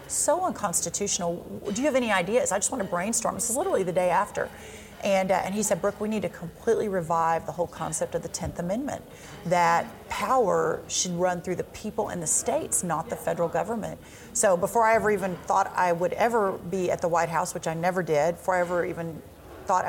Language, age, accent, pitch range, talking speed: English, 40-59, American, 165-195 Hz, 220 wpm